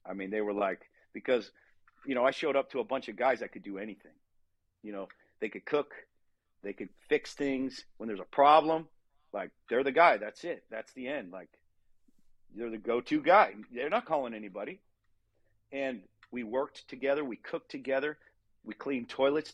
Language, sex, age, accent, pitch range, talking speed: English, male, 50-69, American, 100-120 Hz, 190 wpm